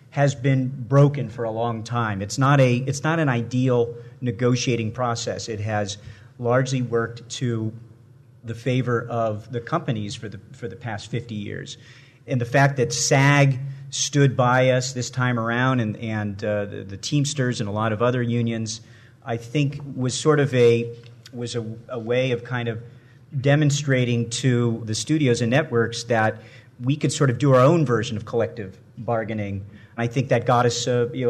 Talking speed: 180 wpm